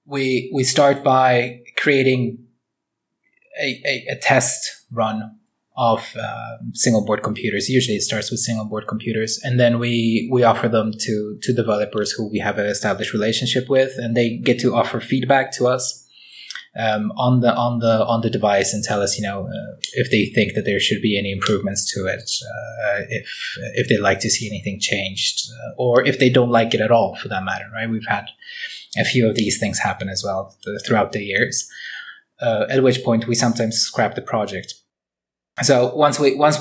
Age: 20-39